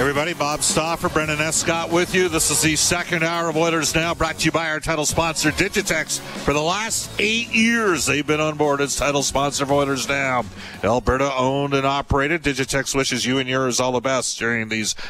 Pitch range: 115-150 Hz